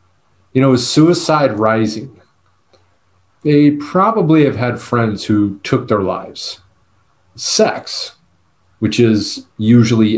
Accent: American